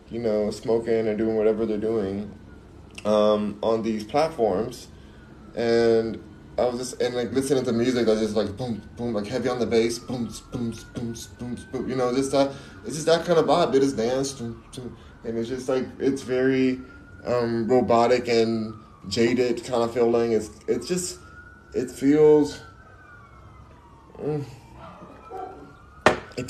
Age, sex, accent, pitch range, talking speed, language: 20-39, male, American, 105-135 Hz, 165 wpm, English